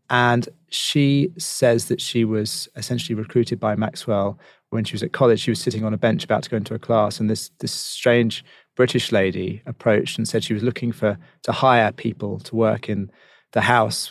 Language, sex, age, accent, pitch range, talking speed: English, male, 30-49, British, 105-125 Hz, 205 wpm